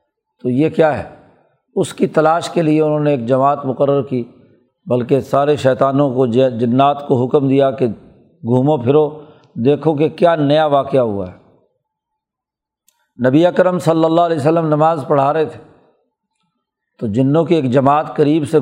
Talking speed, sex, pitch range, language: 160 wpm, male, 135-160 Hz, Urdu